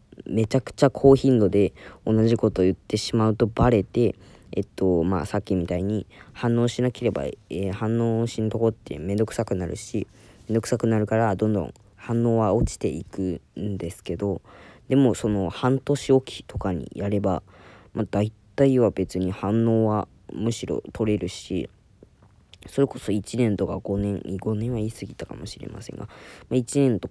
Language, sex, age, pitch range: Japanese, female, 20-39, 95-115 Hz